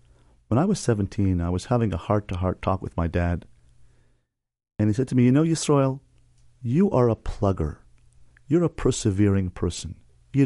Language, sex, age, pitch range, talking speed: English, male, 40-59, 85-120 Hz, 170 wpm